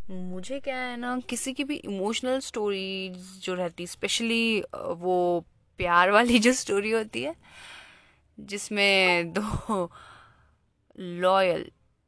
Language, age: Hindi, 20-39